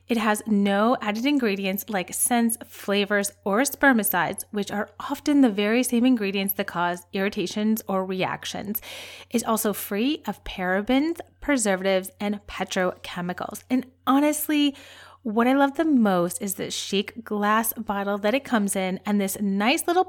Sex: female